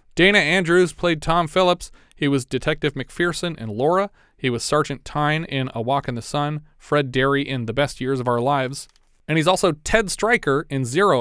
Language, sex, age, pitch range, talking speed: English, male, 30-49, 130-160 Hz, 200 wpm